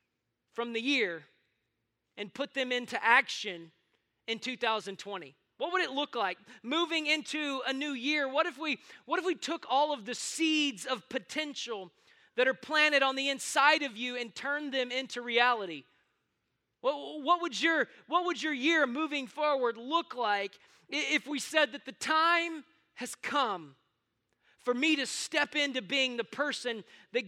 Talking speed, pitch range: 155 wpm, 235-295 Hz